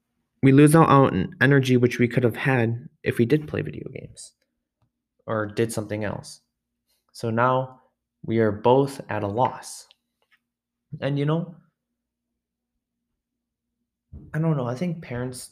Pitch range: 100-120 Hz